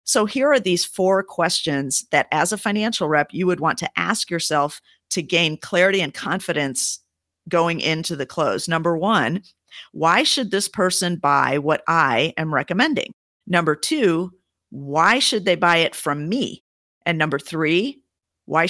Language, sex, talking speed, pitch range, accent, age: English, female, 160 wpm, 155-190 Hz, American, 50-69